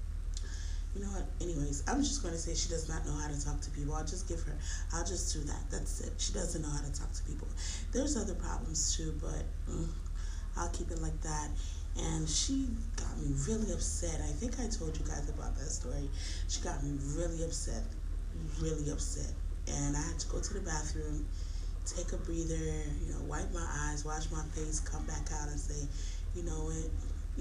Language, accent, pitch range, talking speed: English, American, 75-80 Hz, 210 wpm